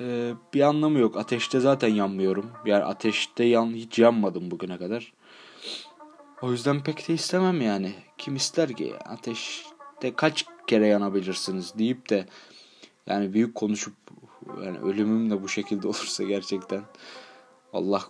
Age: 30-49